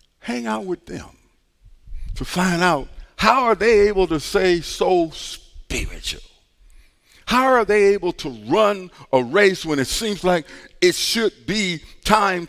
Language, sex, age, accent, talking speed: English, male, 50-69, American, 150 wpm